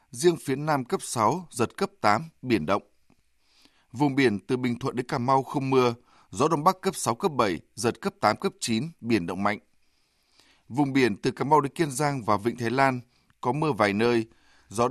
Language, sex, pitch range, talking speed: Vietnamese, male, 115-155 Hz, 210 wpm